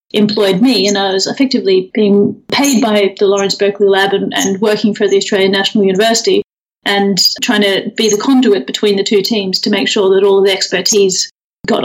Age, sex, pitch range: 30-49, female, 195-230 Hz